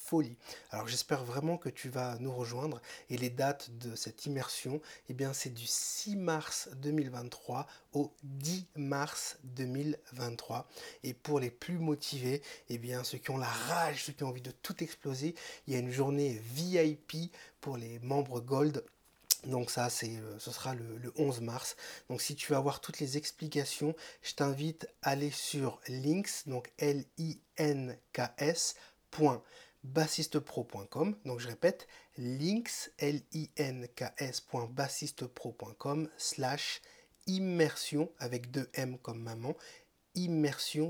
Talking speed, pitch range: 145 wpm, 125-155 Hz